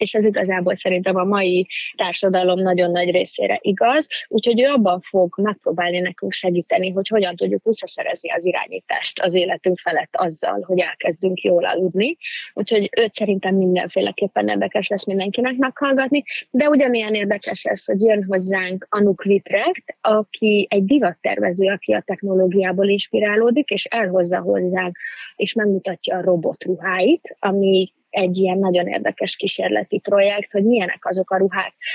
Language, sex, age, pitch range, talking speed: Hungarian, female, 20-39, 185-210 Hz, 145 wpm